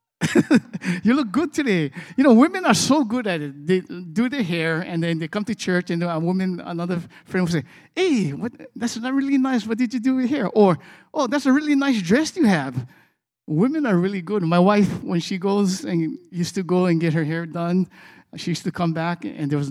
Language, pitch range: English, 160-225 Hz